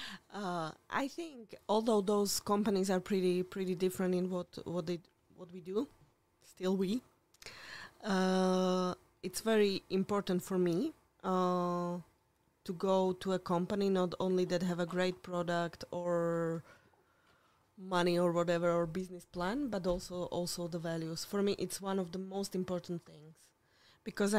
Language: Slovak